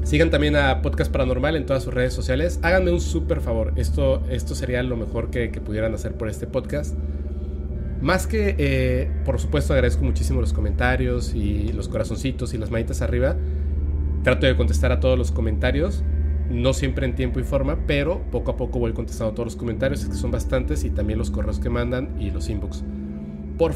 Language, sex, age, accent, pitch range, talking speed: Spanish, male, 30-49, Mexican, 70-80 Hz, 200 wpm